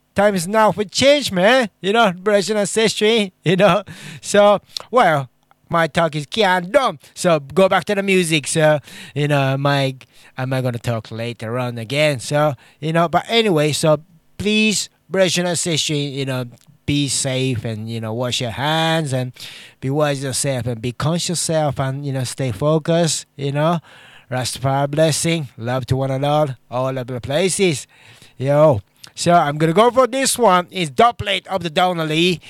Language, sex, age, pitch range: English, male, 20-39, 130-180 Hz